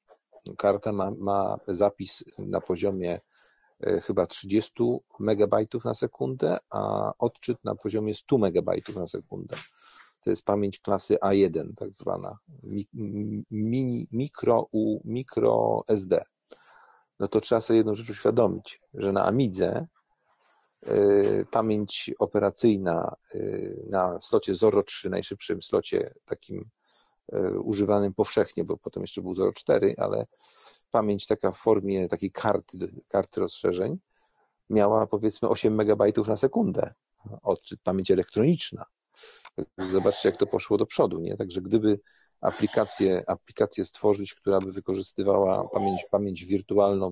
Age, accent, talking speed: 40-59, native, 125 wpm